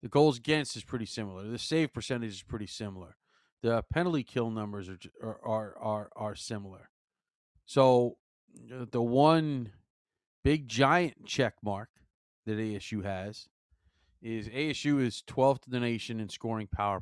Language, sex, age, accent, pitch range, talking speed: English, male, 40-59, American, 100-125 Hz, 145 wpm